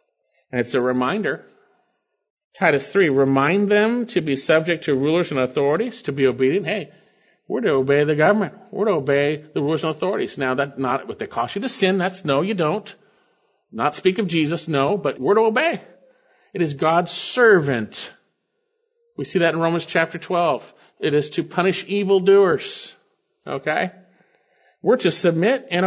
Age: 50-69